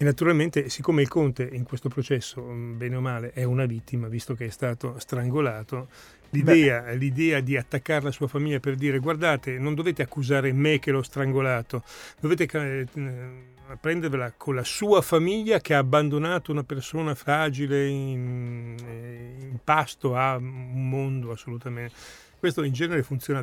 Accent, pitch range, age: native, 125-145 Hz, 40-59